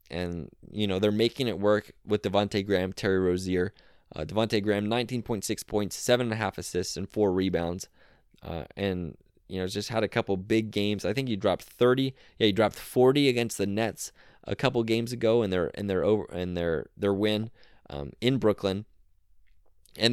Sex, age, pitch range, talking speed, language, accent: male, 20-39, 90-115 Hz, 165 wpm, English, American